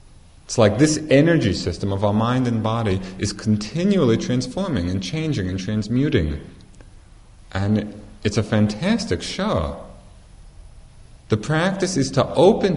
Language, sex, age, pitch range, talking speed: English, male, 30-49, 90-115 Hz, 125 wpm